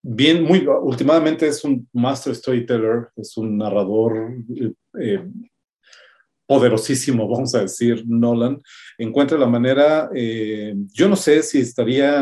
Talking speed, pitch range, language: 120 wpm, 115-150 Hz, Spanish